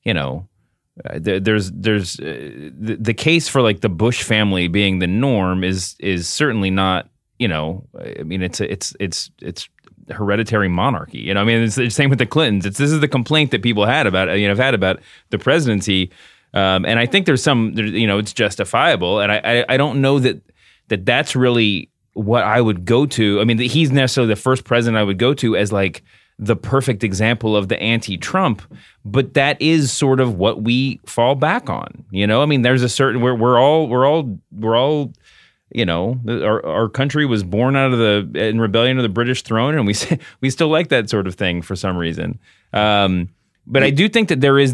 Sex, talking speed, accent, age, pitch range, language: male, 215 wpm, American, 30-49, 105-130 Hz, English